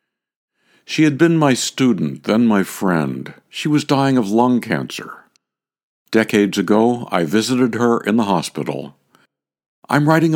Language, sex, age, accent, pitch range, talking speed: English, male, 60-79, American, 80-120 Hz, 140 wpm